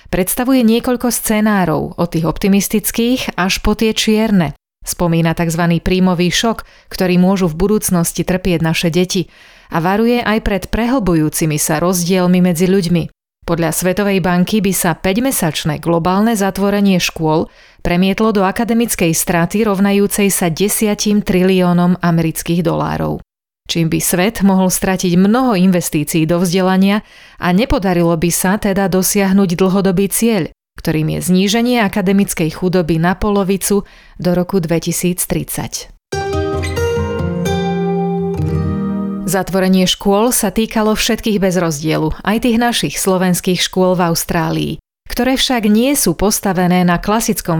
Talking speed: 120 wpm